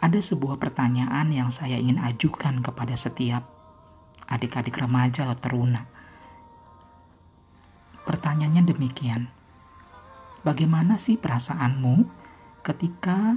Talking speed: 85 wpm